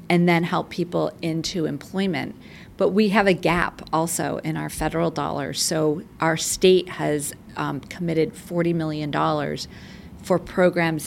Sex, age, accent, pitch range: female, 40-59, American, 160-190 Hz